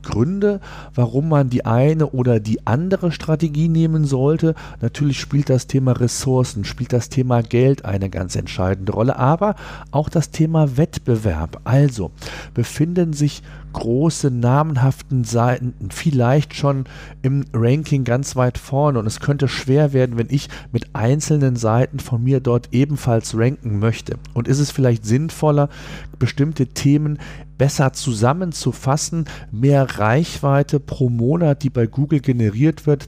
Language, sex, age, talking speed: German, male, 40-59, 140 wpm